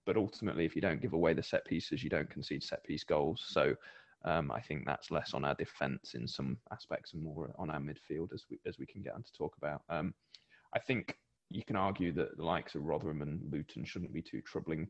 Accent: British